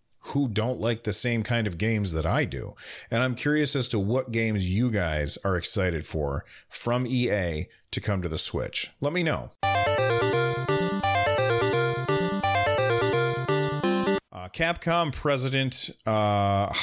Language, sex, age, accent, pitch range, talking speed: English, male, 40-59, American, 95-120 Hz, 130 wpm